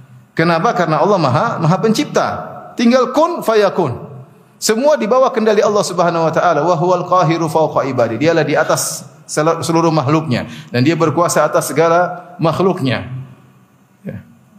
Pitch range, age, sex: 160-215 Hz, 30-49, male